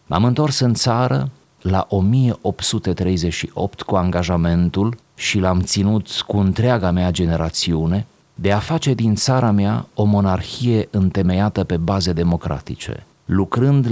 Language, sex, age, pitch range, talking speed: Romanian, male, 30-49, 90-110 Hz, 120 wpm